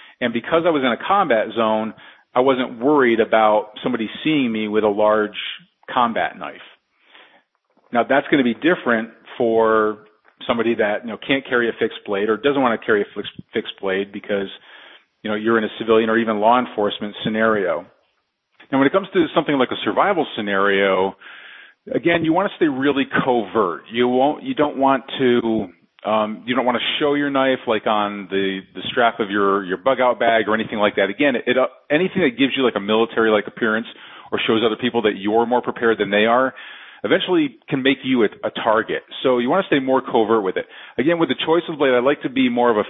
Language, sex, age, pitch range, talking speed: English, male, 40-59, 105-130 Hz, 215 wpm